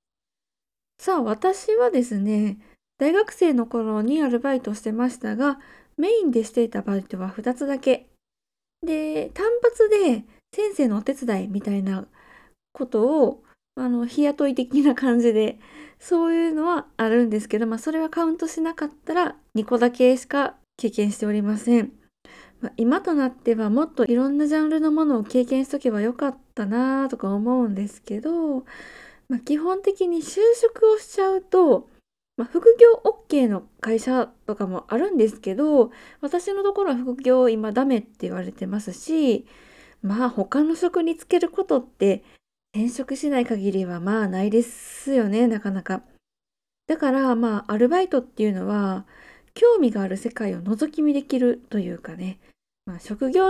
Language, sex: Japanese, female